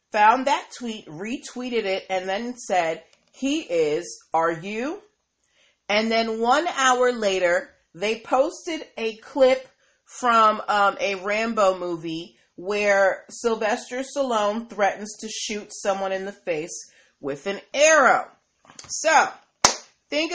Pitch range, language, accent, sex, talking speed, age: 205-265 Hz, English, American, female, 120 wpm, 40-59